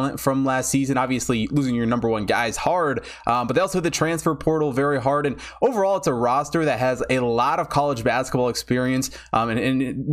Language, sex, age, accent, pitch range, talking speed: English, male, 20-39, American, 125-155 Hz, 220 wpm